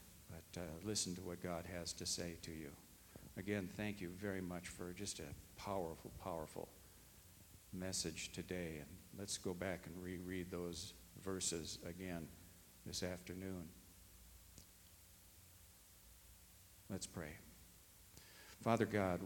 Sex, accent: male, American